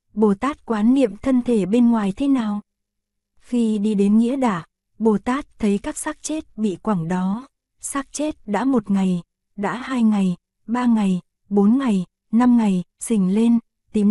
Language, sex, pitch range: Korean, female, 200-240 Hz